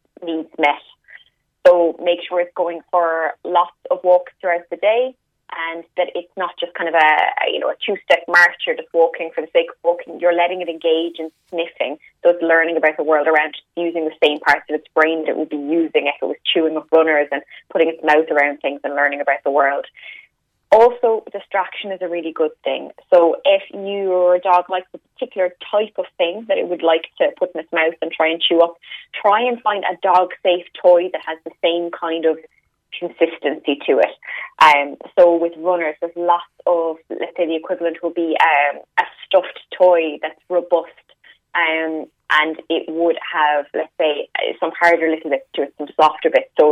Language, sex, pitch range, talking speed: English, female, 160-180 Hz, 205 wpm